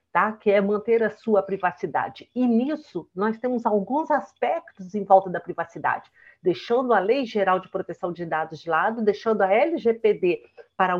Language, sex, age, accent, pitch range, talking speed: Portuguese, female, 50-69, Brazilian, 200-260 Hz, 165 wpm